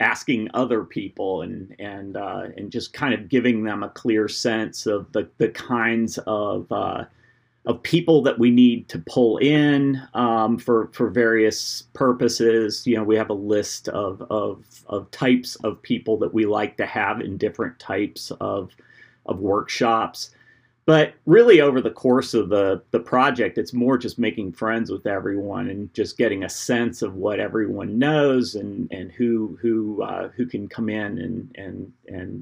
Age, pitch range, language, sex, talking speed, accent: 30-49, 110-130 Hz, English, male, 175 wpm, American